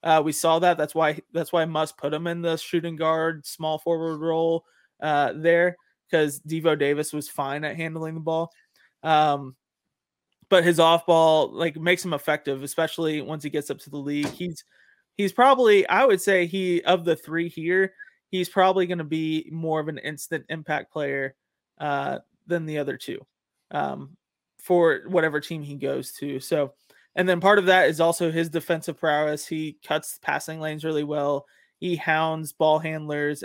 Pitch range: 150-175 Hz